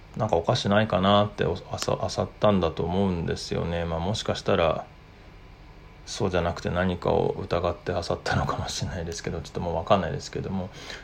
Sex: male